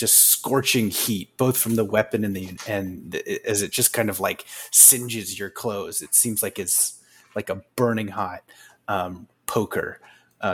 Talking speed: 170 wpm